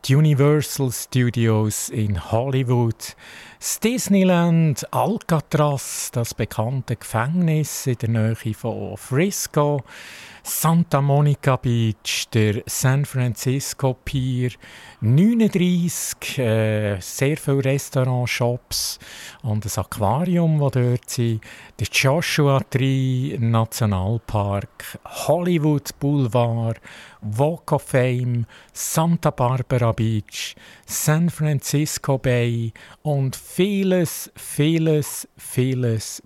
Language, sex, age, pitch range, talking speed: German, male, 50-69, 115-145 Hz, 90 wpm